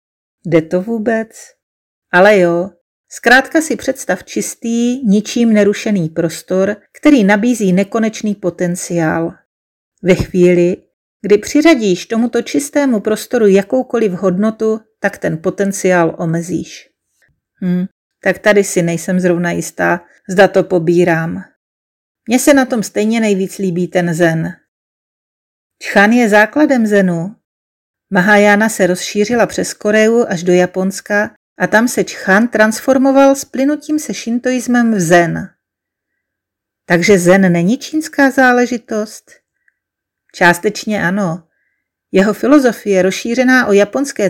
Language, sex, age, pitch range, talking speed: Czech, female, 40-59, 185-240 Hz, 110 wpm